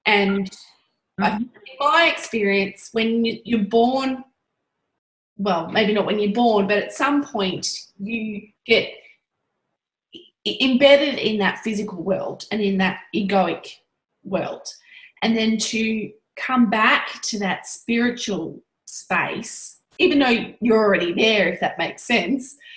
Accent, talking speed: Australian, 125 wpm